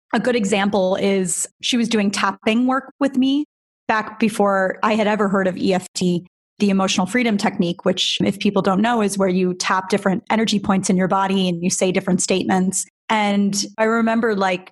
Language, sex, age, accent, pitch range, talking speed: English, female, 30-49, American, 190-225 Hz, 190 wpm